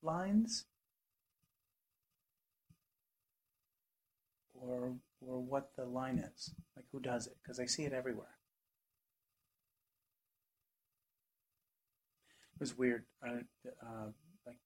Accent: American